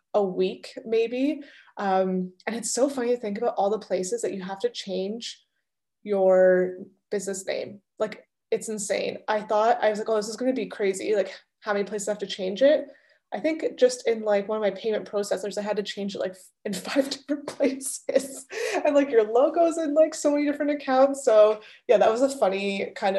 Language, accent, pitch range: English, American, 195-235 Hz